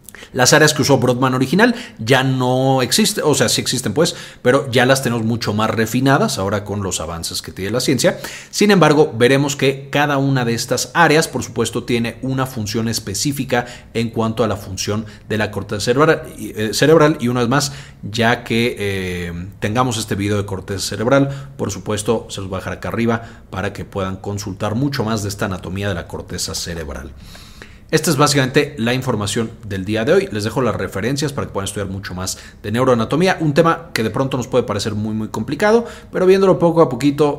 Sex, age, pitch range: male, 40-59, 100-135 Hz